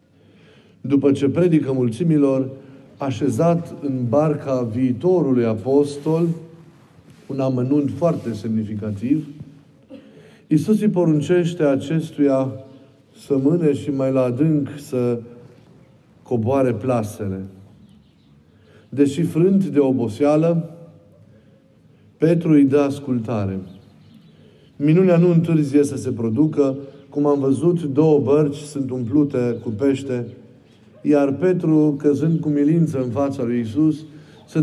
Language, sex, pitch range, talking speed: Romanian, male, 120-150 Hz, 100 wpm